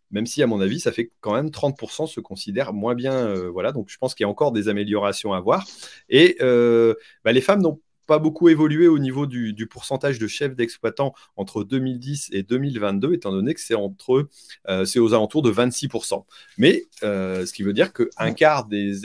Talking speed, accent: 215 wpm, French